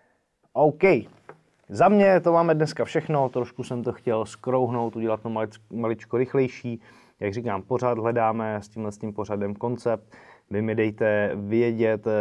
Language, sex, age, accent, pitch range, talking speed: Czech, male, 20-39, native, 100-120 Hz, 155 wpm